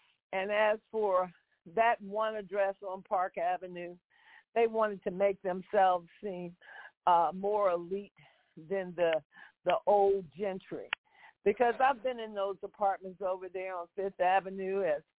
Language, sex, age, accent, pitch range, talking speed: English, female, 50-69, American, 180-210 Hz, 140 wpm